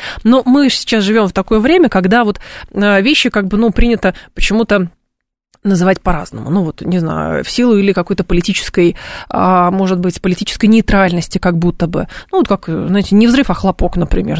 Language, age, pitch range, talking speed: Russian, 20-39, 175-215 Hz, 175 wpm